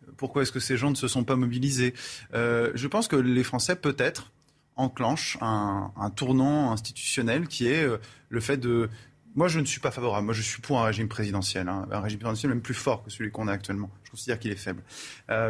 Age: 20-39